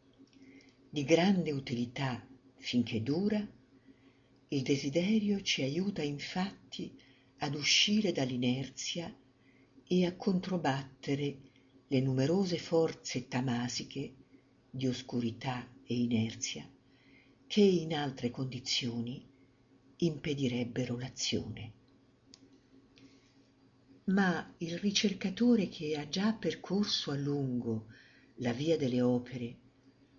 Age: 50-69